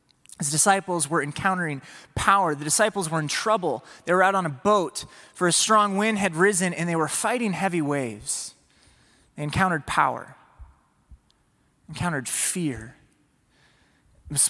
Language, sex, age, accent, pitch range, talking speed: English, male, 30-49, American, 135-185 Hz, 140 wpm